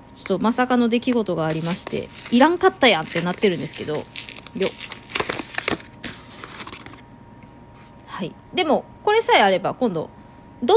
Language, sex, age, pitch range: Japanese, female, 20-39, 180-260 Hz